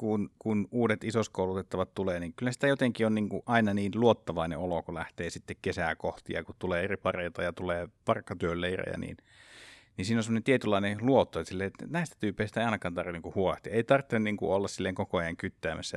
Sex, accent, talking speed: male, native, 200 wpm